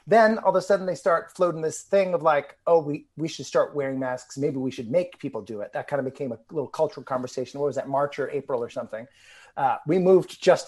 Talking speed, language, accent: 260 wpm, English, American